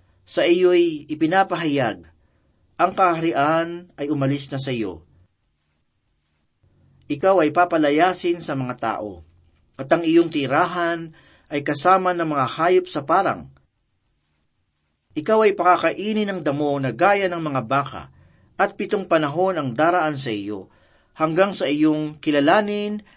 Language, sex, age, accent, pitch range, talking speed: Filipino, male, 40-59, native, 115-175 Hz, 125 wpm